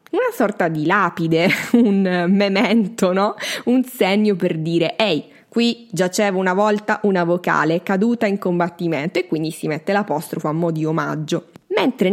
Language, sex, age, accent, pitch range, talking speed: Italian, female, 20-39, native, 175-225 Hz, 155 wpm